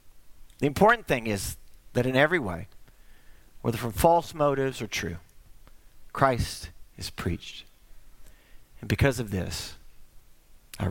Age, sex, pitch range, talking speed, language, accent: 40-59, male, 95-135 Hz, 120 wpm, English, American